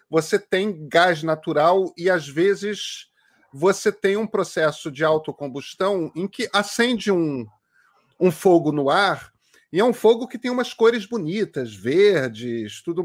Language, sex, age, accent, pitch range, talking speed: Portuguese, male, 40-59, Brazilian, 160-210 Hz, 145 wpm